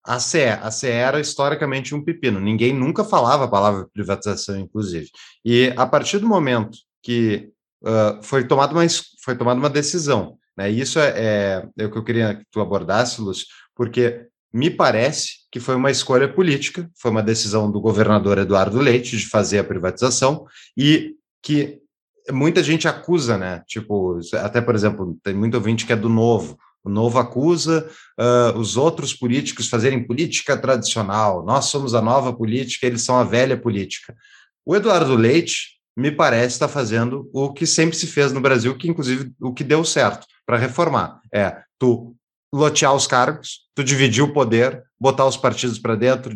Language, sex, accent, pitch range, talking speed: Portuguese, male, Brazilian, 115-145 Hz, 170 wpm